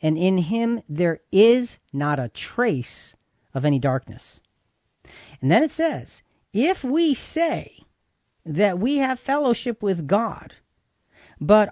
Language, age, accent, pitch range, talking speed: English, 40-59, American, 155-230 Hz, 130 wpm